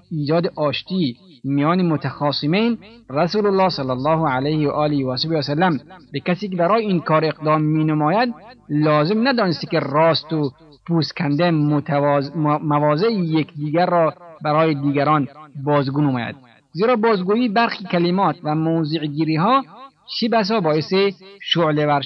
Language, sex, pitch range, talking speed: Persian, male, 145-195 Hz, 130 wpm